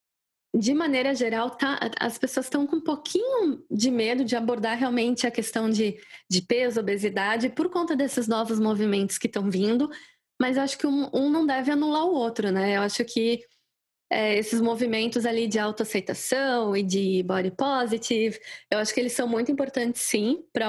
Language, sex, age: Portuguese, female, 10-29